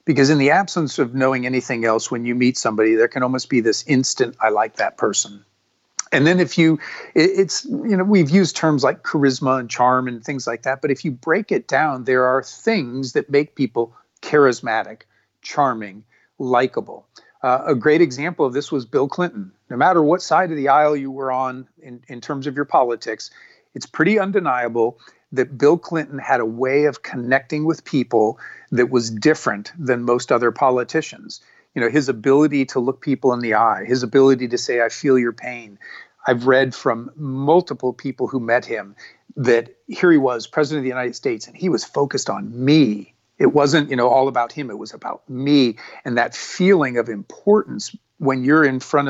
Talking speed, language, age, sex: 195 wpm, English, 40-59, male